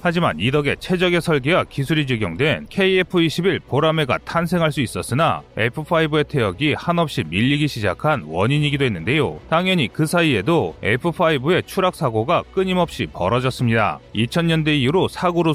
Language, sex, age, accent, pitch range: Korean, male, 30-49, native, 130-170 Hz